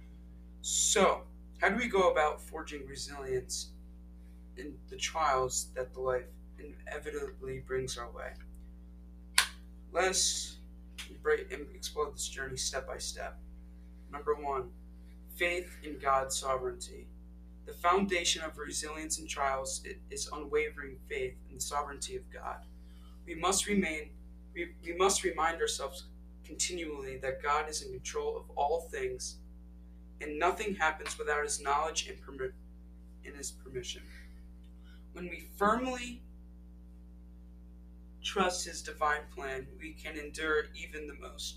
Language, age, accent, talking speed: English, 20-39, American, 125 wpm